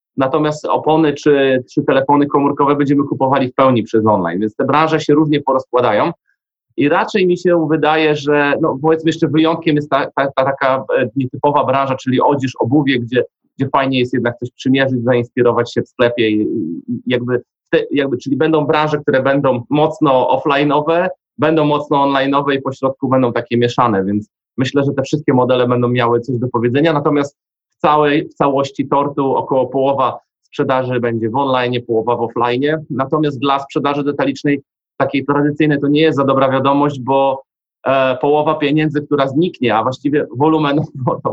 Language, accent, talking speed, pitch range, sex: Polish, native, 165 wpm, 125-150 Hz, male